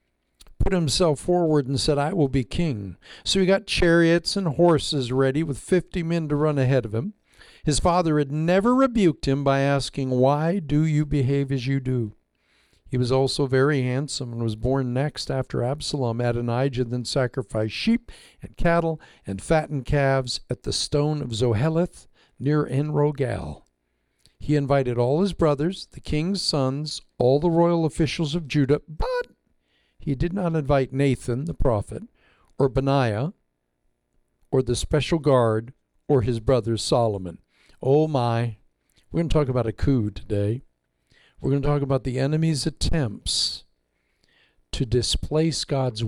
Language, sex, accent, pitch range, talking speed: English, male, American, 120-155 Hz, 155 wpm